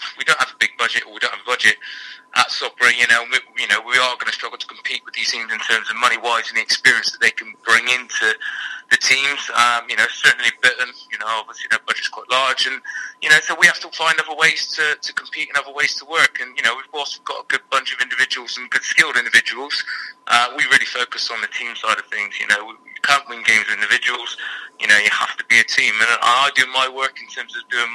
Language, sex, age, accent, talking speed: English, male, 30-49, British, 260 wpm